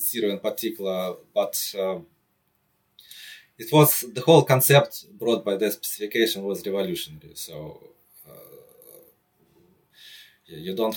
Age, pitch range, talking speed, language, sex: 30-49, 90-125 Hz, 110 wpm, English, male